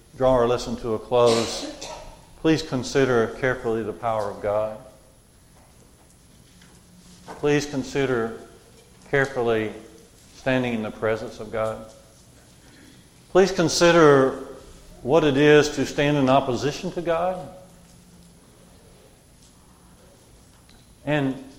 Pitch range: 120-160 Hz